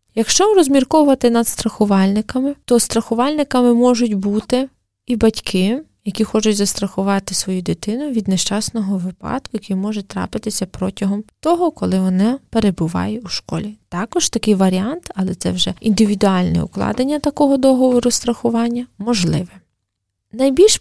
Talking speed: 120 wpm